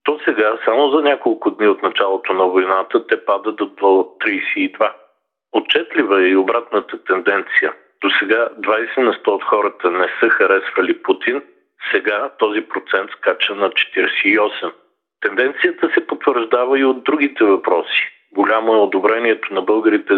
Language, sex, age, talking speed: Bulgarian, male, 50-69, 145 wpm